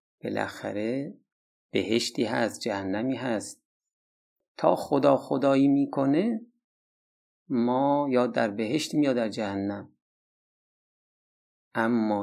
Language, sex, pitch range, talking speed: Persian, male, 110-150 Hz, 90 wpm